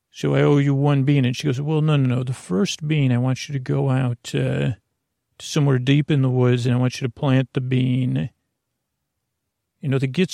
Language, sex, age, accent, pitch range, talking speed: English, male, 40-59, American, 125-140 Hz, 240 wpm